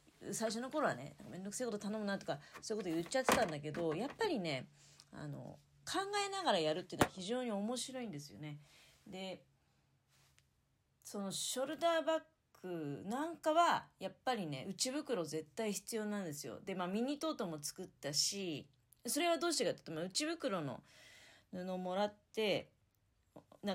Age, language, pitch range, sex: 30-49, Japanese, 165-265 Hz, female